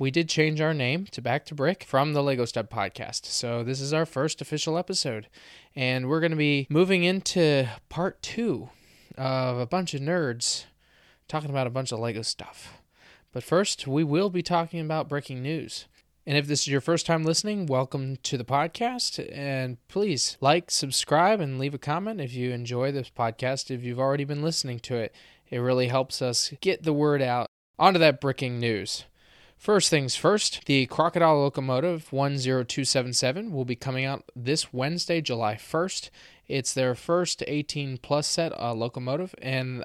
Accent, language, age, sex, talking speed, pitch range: American, English, 20-39, male, 175 wpm, 125-160 Hz